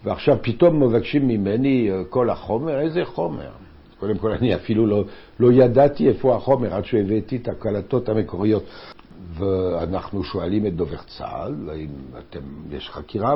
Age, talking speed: 60-79, 140 wpm